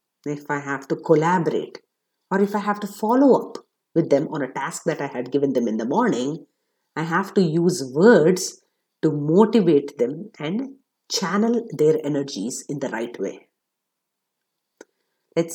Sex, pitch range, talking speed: female, 155-215 Hz, 160 wpm